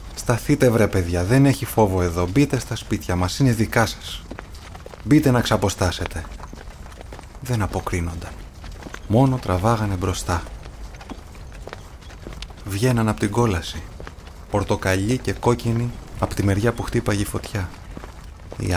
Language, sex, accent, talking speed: Greek, male, native, 120 wpm